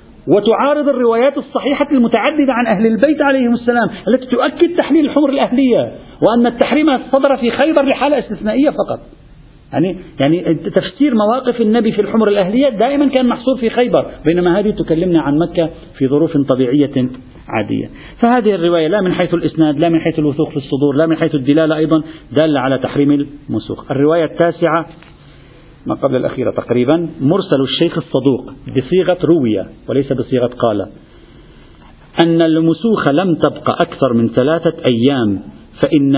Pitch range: 140-220 Hz